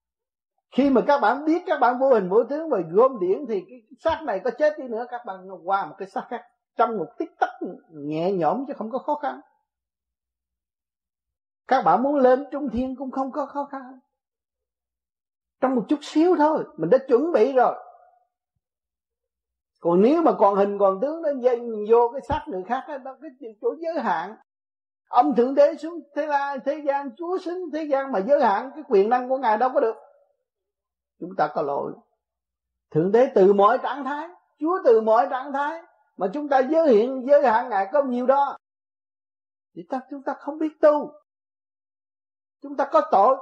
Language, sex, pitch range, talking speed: Vietnamese, male, 220-315 Hz, 195 wpm